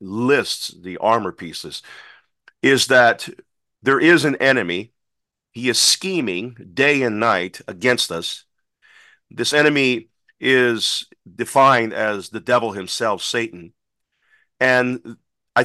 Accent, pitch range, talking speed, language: American, 115-145 Hz, 110 wpm, English